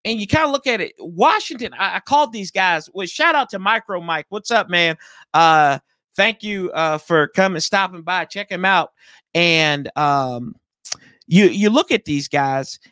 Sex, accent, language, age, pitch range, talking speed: male, American, English, 30-49, 155-215 Hz, 190 wpm